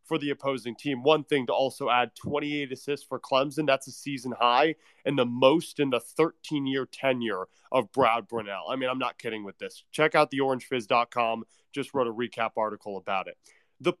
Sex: male